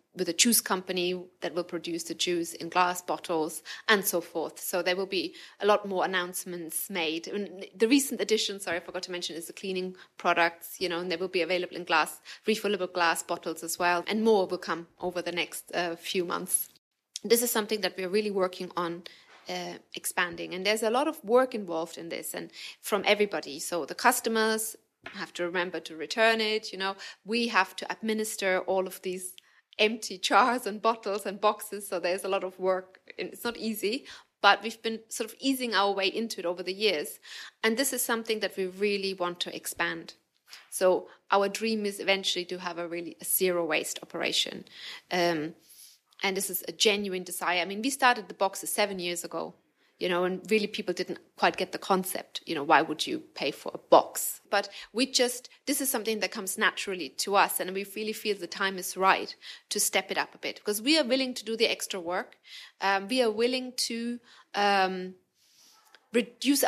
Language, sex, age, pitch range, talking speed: English, female, 20-39, 180-220 Hz, 205 wpm